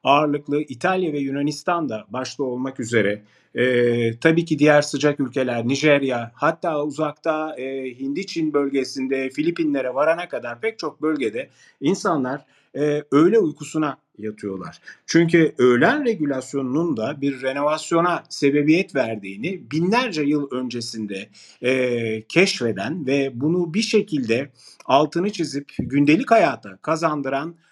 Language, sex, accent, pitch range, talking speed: Turkish, male, native, 125-165 Hz, 105 wpm